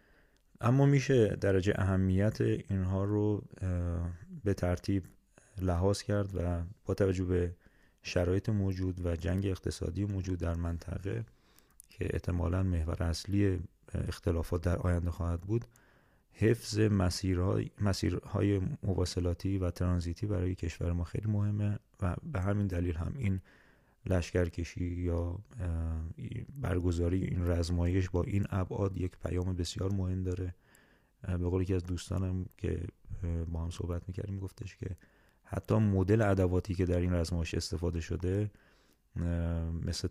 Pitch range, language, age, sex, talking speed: 85-100 Hz, Persian, 30-49, male, 125 wpm